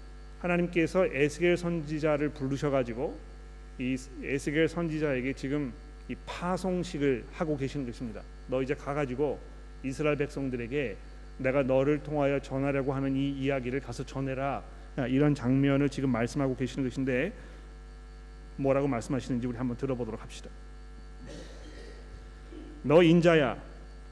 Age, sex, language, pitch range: 40-59, male, Korean, 135-165 Hz